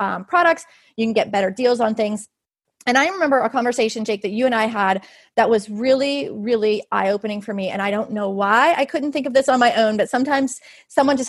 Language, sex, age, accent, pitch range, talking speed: English, female, 30-49, American, 210-255 Hz, 235 wpm